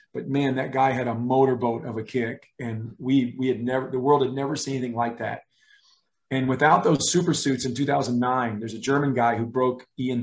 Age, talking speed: 40-59, 210 wpm